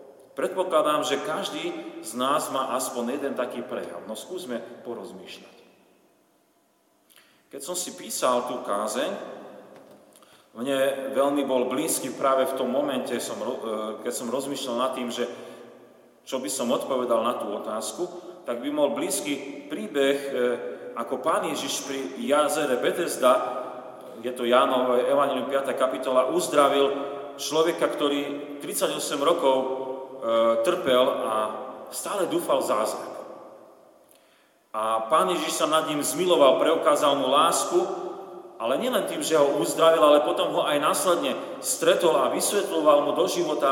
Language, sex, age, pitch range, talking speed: Slovak, male, 40-59, 120-150 Hz, 130 wpm